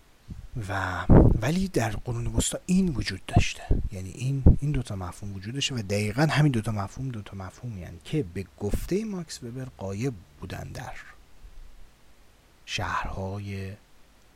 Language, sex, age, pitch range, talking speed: Persian, male, 30-49, 95-140 Hz, 145 wpm